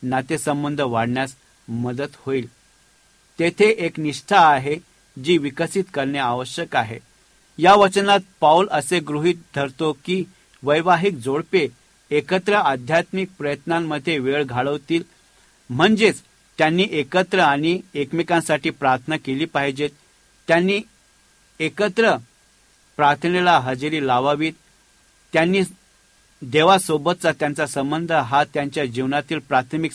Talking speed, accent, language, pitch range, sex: 95 wpm, Indian, English, 140-180 Hz, male